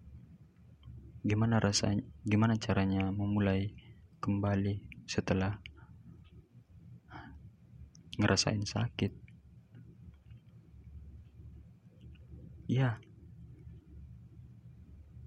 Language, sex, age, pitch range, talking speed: Indonesian, male, 20-39, 95-110 Hz, 40 wpm